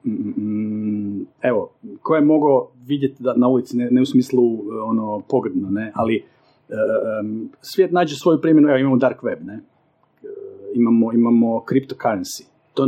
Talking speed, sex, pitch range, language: 145 wpm, male, 125-175 Hz, Croatian